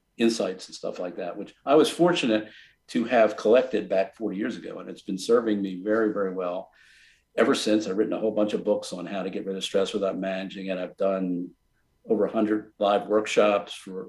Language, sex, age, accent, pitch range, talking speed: English, male, 50-69, American, 95-115 Hz, 215 wpm